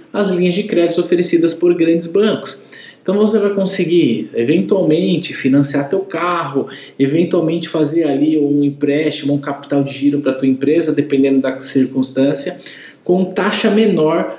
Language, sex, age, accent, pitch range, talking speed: Portuguese, male, 20-39, Brazilian, 140-195 Hz, 140 wpm